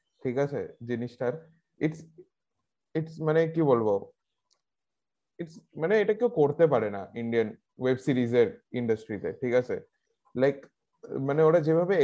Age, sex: 20-39, male